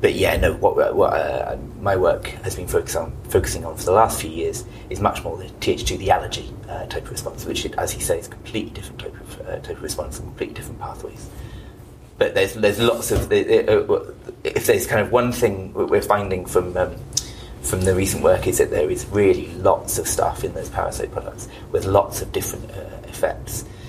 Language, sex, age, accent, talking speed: English, male, 30-49, British, 215 wpm